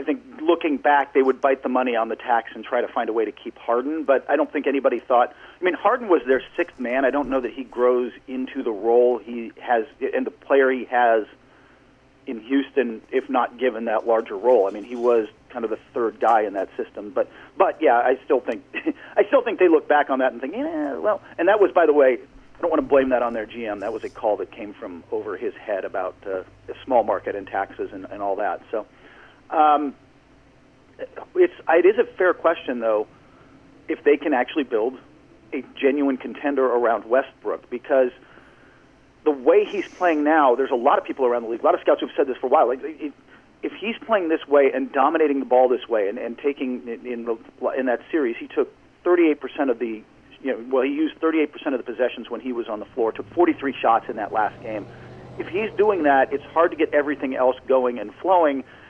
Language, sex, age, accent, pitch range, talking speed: English, male, 40-59, American, 125-175 Hz, 235 wpm